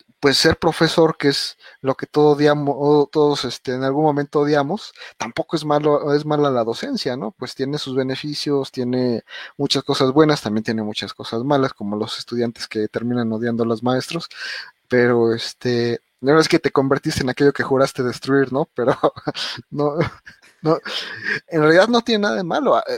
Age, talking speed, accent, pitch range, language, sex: 30-49, 180 wpm, Mexican, 120-145 Hz, Spanish, male